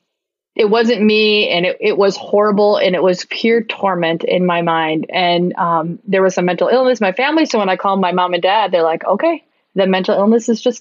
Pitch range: 175-200 Hz